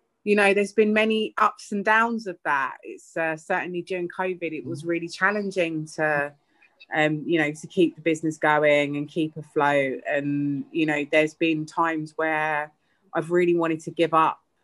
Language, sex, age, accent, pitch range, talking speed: English, female, 30-49, British, 155-190 Hz, 180 wpm